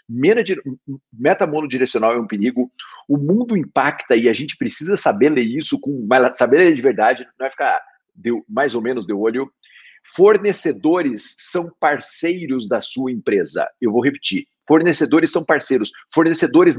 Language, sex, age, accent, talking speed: Portuguese, male, 50-69, Brazilian, 145 wpm